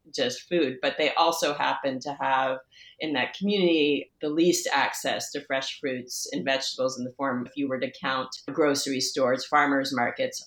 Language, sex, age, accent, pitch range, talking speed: English, female, 30-49, American, 140-170 Hz, 180 wpm